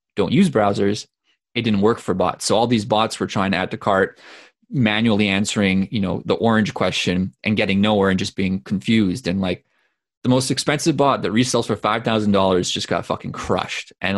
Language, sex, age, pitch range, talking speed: English, male, 20-39, 100-115 Hz, 205 wpm